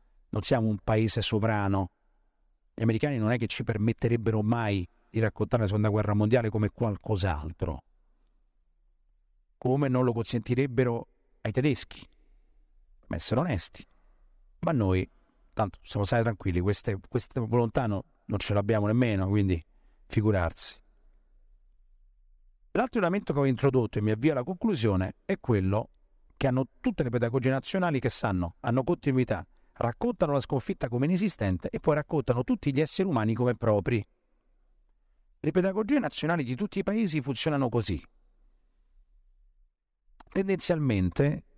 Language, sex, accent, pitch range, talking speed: Italian, male, native, 100-135 Hz, 130 wpm